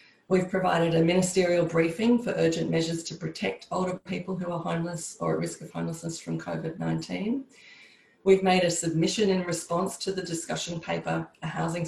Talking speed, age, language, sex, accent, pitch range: 170 wpm, 40-59, English, female, Australian, 155-185 Hz